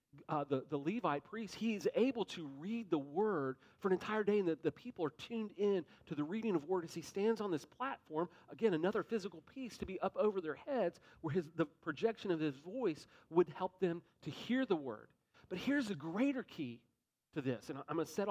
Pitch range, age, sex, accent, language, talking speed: 145-195 Hz, 40-59, male, American, English, 225 wpm